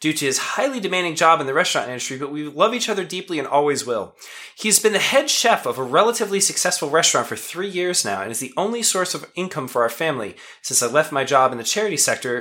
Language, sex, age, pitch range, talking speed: English, male, 20-39, 145-215 Hz, 250 wpm